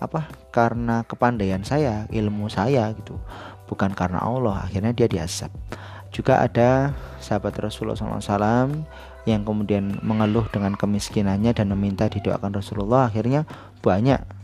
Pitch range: 100-115 Hz